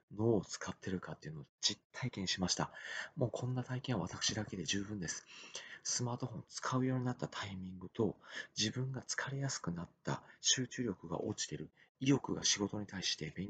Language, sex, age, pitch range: Japanese, male, 40-59, 95-120 Hz